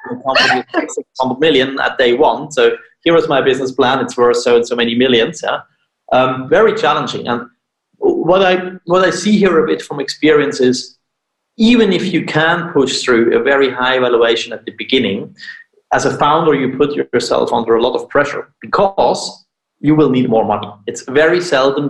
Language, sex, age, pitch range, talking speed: English, male, 30-49, 120-185 Hz, 185 wpm